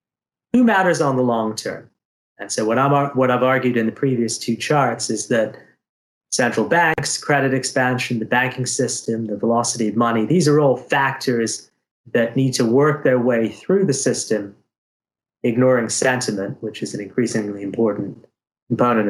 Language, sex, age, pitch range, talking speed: English, male, 30-49, 110-140 Hz, 165 wpm